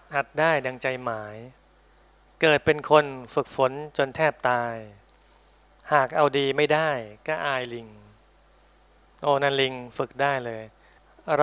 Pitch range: 125-150 Hz